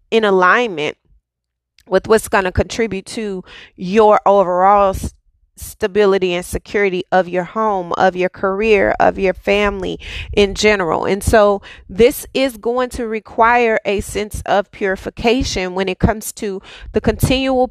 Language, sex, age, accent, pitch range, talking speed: English, female, 30-49, American, 190-220 Hz, 140 wpm